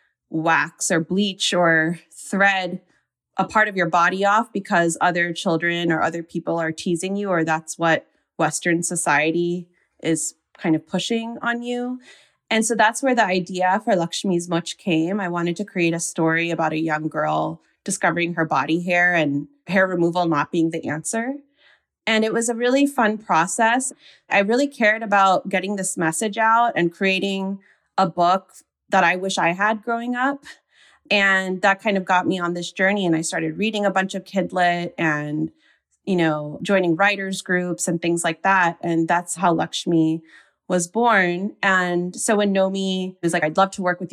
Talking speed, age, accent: 180 wpm, 20-39, American